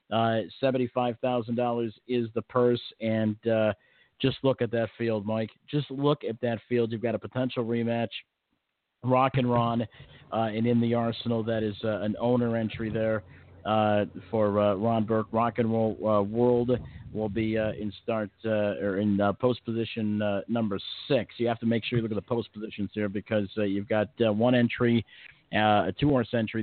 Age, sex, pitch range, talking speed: 50-69, male, 110-125 Hz, 190 wpm